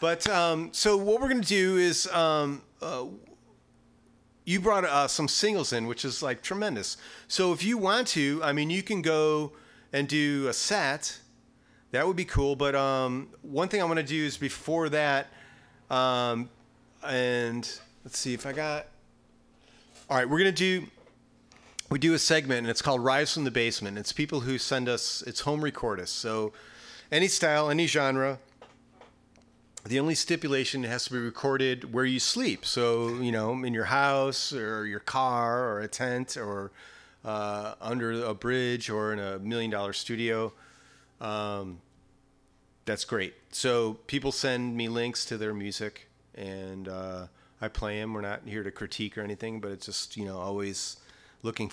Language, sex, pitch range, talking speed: English, male, 105-150 Hz, 175 wpm